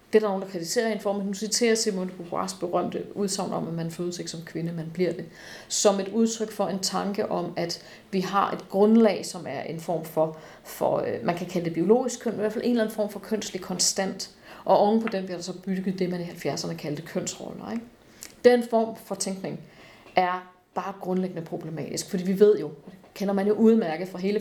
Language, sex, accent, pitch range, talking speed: Danish, female, native, 175-215 Hz, 230 wpm